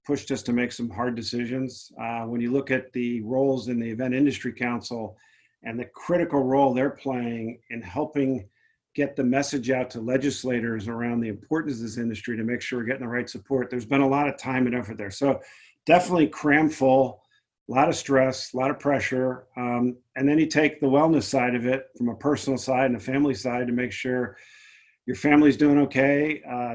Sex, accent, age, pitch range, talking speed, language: male, American, 40-59, 120-140 Hz, 210 wpm, English